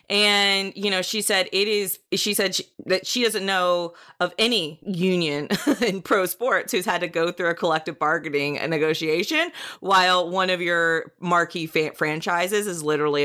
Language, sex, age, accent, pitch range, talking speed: English, female, 30-49, American, 165-215 Hz, 170 wpm